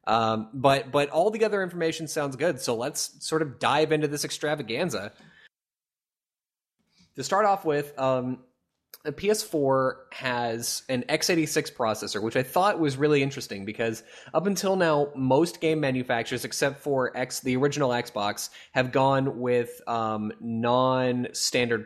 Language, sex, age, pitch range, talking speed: English, male, 20-39, 120-155 Hz, 145 wpm